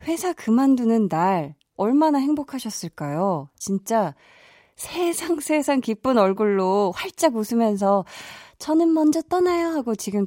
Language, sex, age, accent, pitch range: Korean, female, 20-39, native, 180-255 Hz